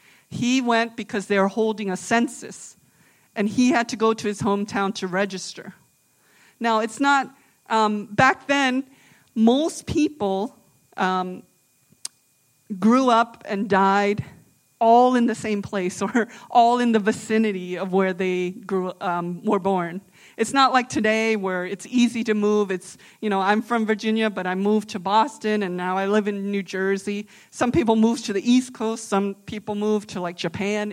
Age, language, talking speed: 40-59, English, 170 wpm